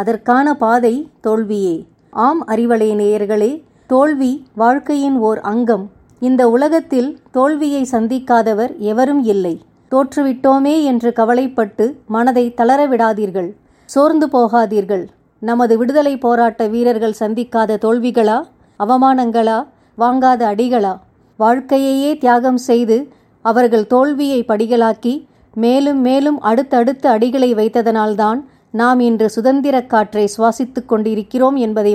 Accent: native